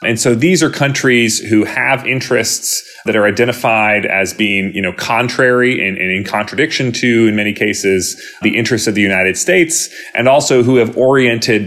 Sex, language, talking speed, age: male, English, 180 wpm, 30-49